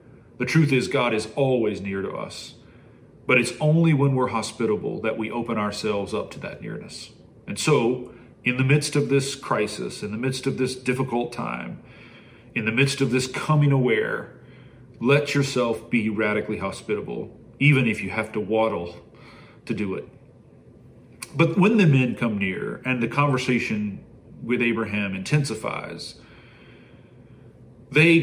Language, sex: English, male